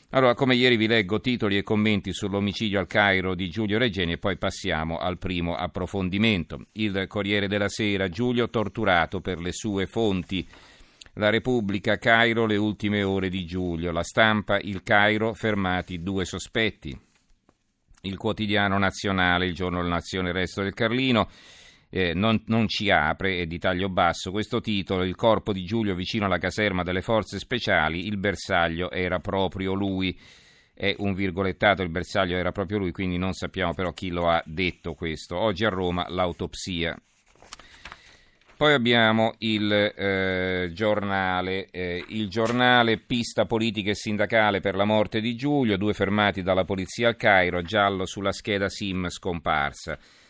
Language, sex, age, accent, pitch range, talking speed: Italian, male, 50-69, native, 90-110 Hz, 155 wpm